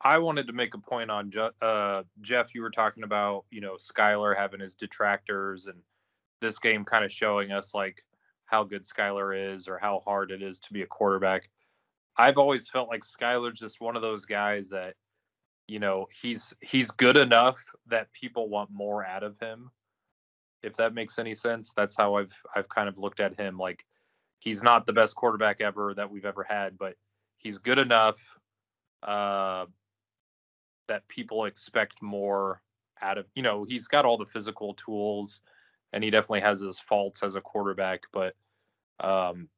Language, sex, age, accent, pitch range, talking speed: English, male, 20-39, American, 95-110 Hz, 180 wpm